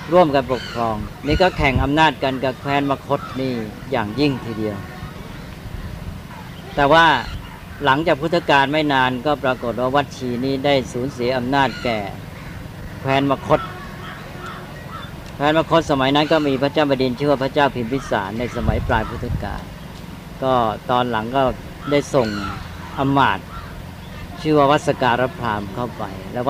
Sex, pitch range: female, 120-140 Hz